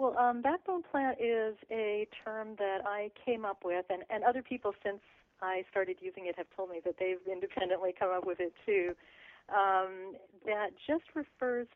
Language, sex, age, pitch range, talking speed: English, female, 40-59, 180-220 Hz, 185 wpm